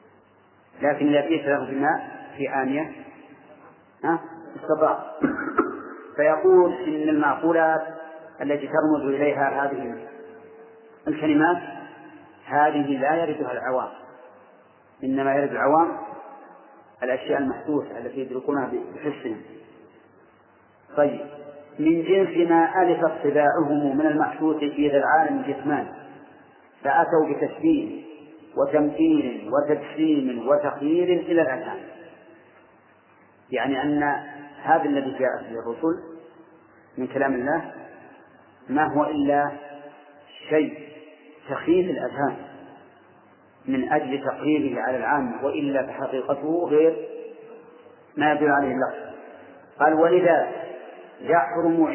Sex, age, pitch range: male, 40-59, 145-165 Hz